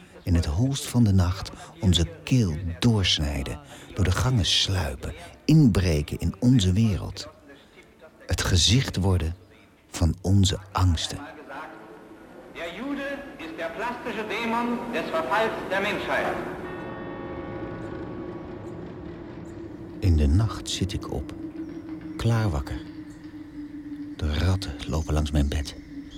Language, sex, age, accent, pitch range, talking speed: Dutch, male, 60-79, Dutch, 90-145 Hz, 100 wpm